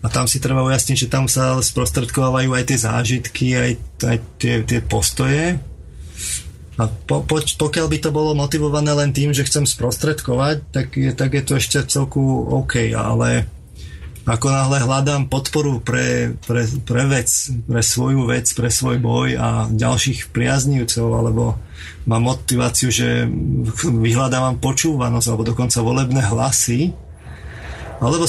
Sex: male